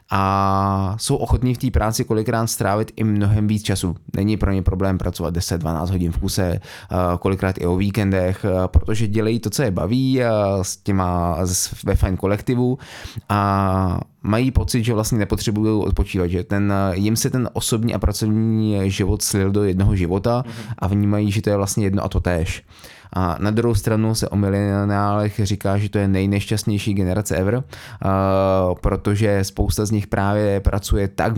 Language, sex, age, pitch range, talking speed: Czech, male, 20-39, 95-110 Hz, 170 wpm